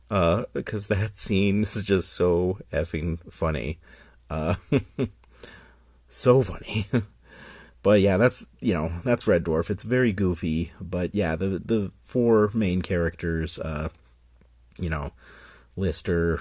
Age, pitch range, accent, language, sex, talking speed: 30-49, 80-95 Hz, American, English, male, 125 wpm